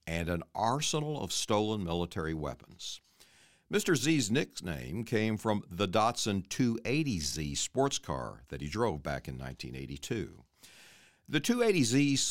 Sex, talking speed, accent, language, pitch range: male, 110 wpm, American, English, 85-125 Hz